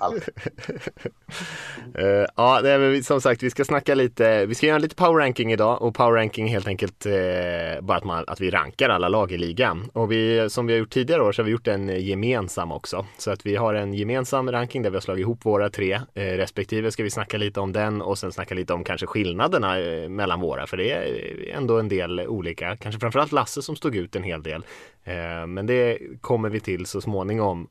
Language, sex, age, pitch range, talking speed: Swedish, male, 20-39, 100-120 Hz, 225 wpm